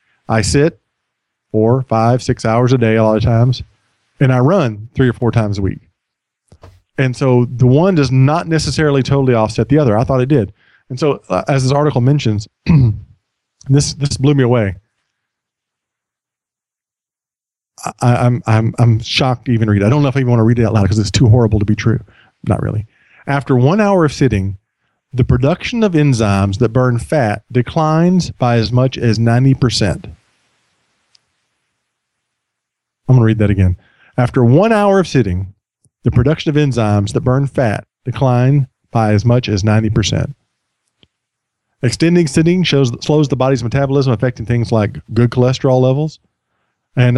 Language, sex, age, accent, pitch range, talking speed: English, male, 40-59, American, 110-140 Hz, 170 wpm